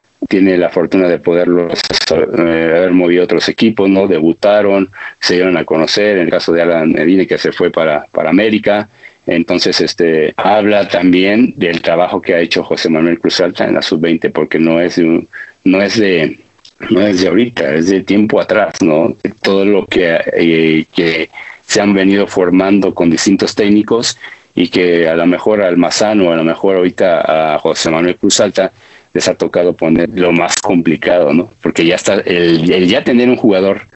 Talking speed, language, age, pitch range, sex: 185 wpm, Spanish, 50-69, 85-100 Hz, male